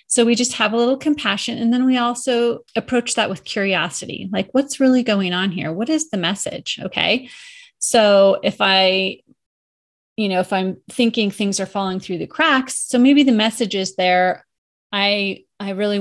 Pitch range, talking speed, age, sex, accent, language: 190-240 Hz, 185 wpm, 30-49, female, American, English